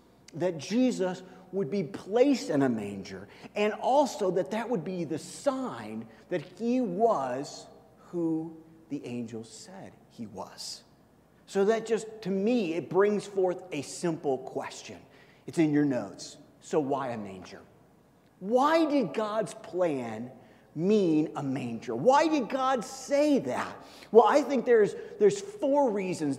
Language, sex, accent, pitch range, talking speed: English, male, American, 155-225 Hz, 145 wpm